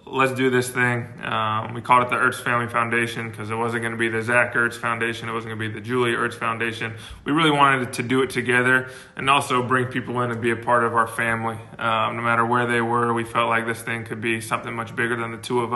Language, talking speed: English, 260 wpm